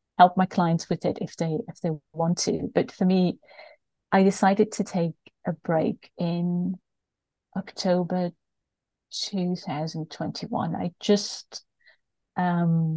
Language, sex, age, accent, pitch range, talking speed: English, female, 30-49, British, 170-210 Hz, 120 wpm